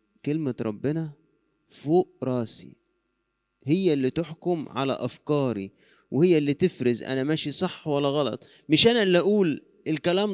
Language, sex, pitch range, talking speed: Arabic, male, 115-160 Hz, 130 wpm